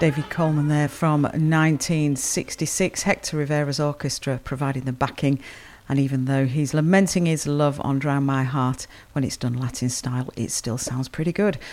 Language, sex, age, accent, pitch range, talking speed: English, female, 40-59, British, 140-170 Hz, 165 wpm